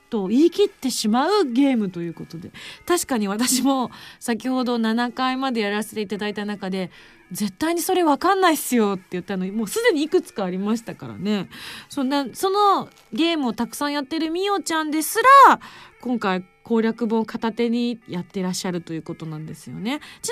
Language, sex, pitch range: Japanese, female, 210-330 Hz